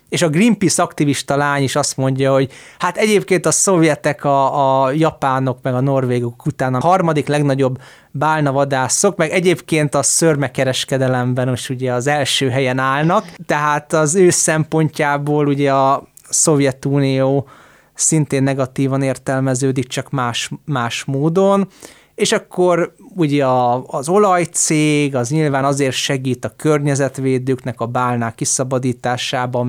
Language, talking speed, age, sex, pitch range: Hungarian, 125 wpm, 20-39, male, 130-155 Hz